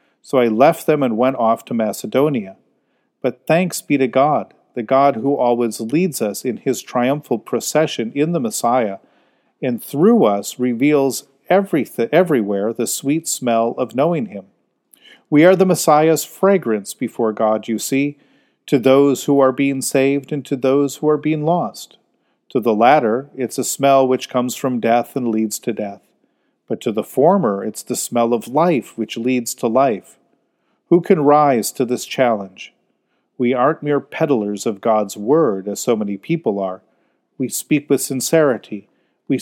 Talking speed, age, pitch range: 165 wpm, 40-59, 115-155 Hz